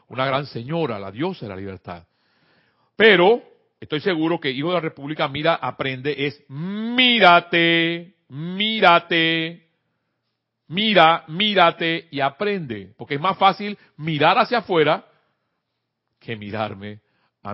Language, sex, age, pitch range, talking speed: Spanish, male, 40-59, 125-175 Hz, 120 wpm